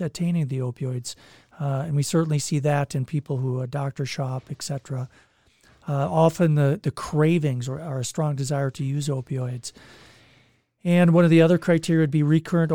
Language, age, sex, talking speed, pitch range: English, 40-59, male, 185 wpm, 130-155 Hz